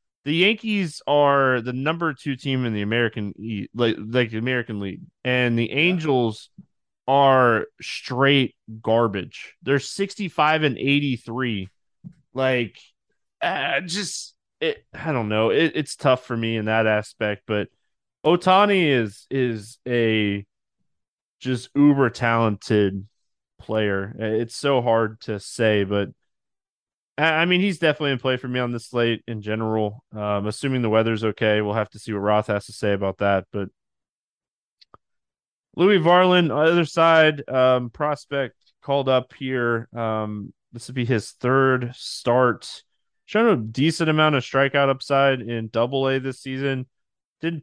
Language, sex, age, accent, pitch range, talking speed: English, male, 20-39, American, 110-140 Hz, 140 wpm